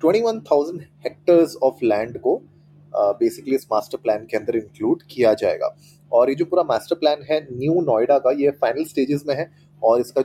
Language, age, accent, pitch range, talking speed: Hindi, 30-49, native, 125-165 Hz, 180 wpm